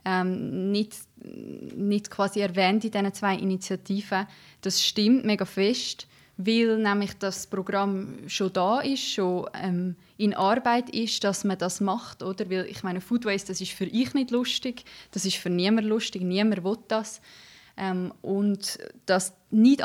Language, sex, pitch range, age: German, female, 185-220 Hz, 20-39